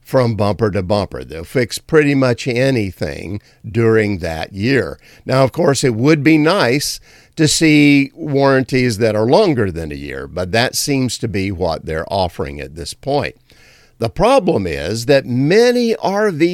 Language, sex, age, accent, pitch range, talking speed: English, male, 50-69, American, 115-155 Hz, 165 wpm